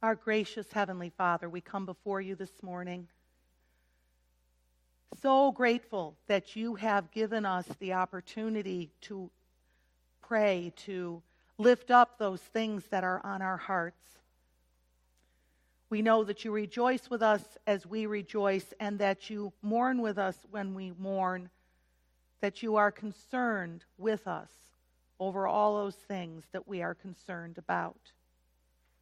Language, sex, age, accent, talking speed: English, female, 40-59, American, 135 wpm